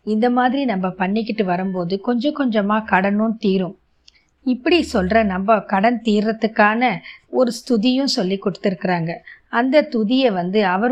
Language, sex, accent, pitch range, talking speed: Tamil, female, native, 200-245 Hz, 120 wpm